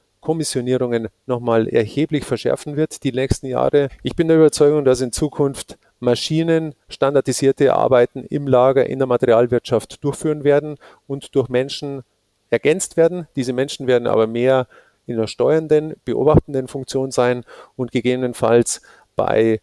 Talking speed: 135 wpm